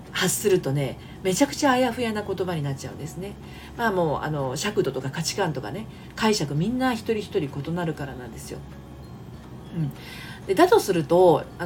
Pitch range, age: 140-210 Hz, 40-59